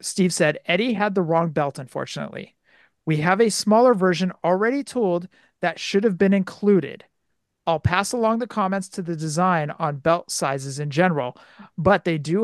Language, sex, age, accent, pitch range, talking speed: English, male, 40-59, American, 165-215 Hz, 175 wpm